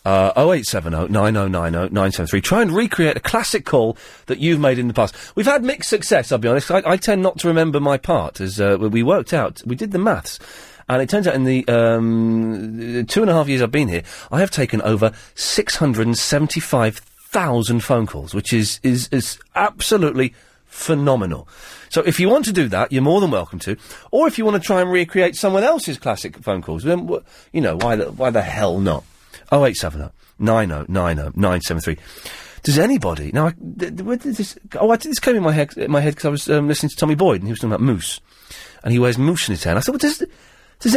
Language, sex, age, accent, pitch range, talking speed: English, male, 40-59, British, 105-180 Hz, 220 wpm